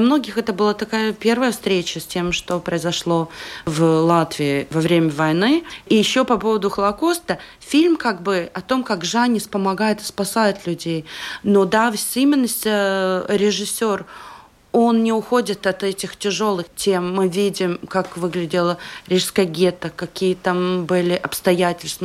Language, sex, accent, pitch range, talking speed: Russian, female, native, 175-220 Hz, 145 wpm